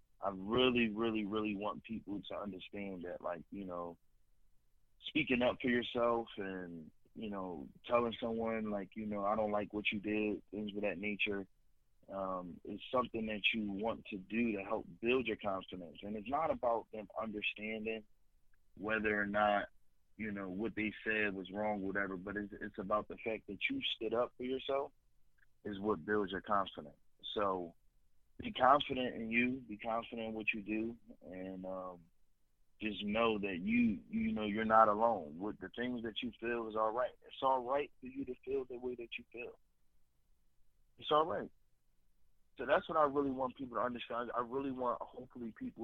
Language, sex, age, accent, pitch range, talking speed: English, male, 20-39, American, 95-120 Hz, 185 wpm